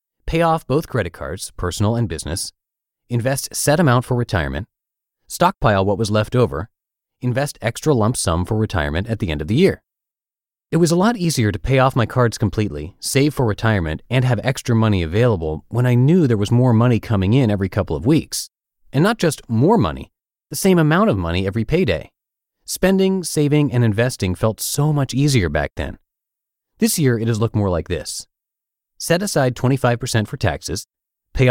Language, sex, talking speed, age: English, male, 185 wpm, 30-49